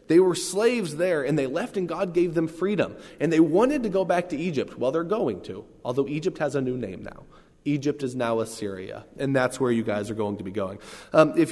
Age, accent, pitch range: 20-39, American, 115-160 Hz